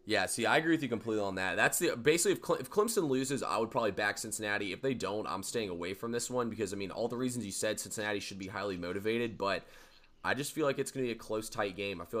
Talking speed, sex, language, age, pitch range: 290 wpm, male, English, 20-39, 95-115 Hz